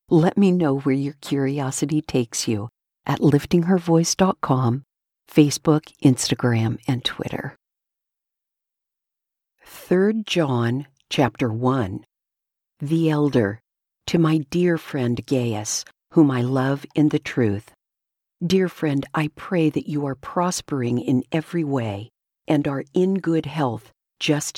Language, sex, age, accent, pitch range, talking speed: English, female, 50-69, American, 130-165 Hz, 115 wpm